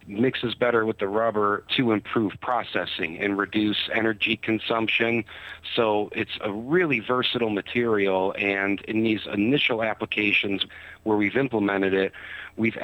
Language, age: English, 40-59